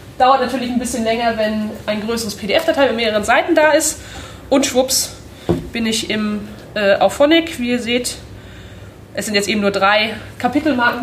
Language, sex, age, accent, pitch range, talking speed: German, female, 20-39, German, 210-285 Hz, 170 wpm